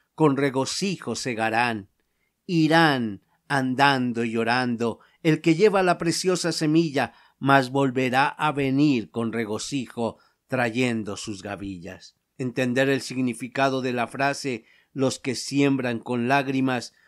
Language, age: Spanish, 50-69